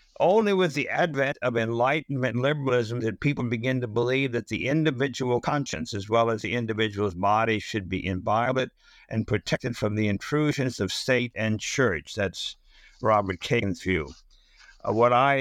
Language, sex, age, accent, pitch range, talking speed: English, male, 60-79, American, 100-125 Hz, 160 wpm